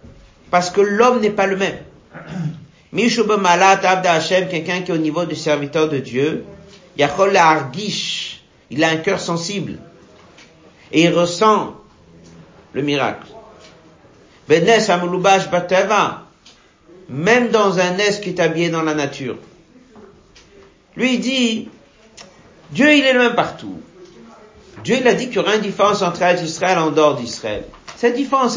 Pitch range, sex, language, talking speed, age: 150-210 Hz, male, French, 135 wpm, 50-69